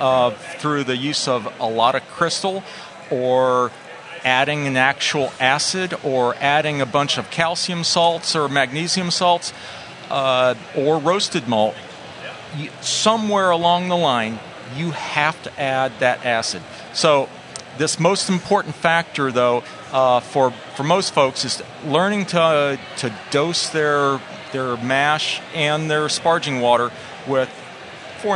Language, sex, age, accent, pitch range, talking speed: English, male, 40-59, American, 130-165 Hz, 140 wpm